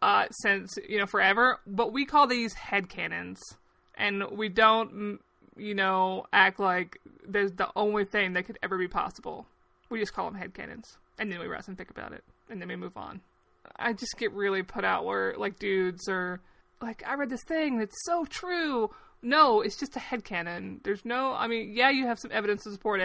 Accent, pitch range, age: American, 200-240 Hz, 20-39